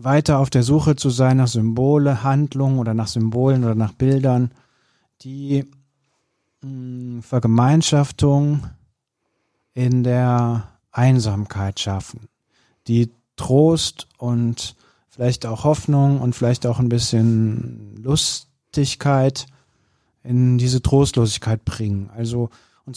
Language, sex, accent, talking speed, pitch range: German, male, German, 100 wpm, 115-140 Hz